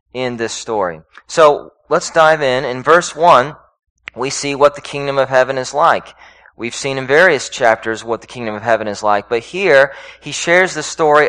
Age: 30-49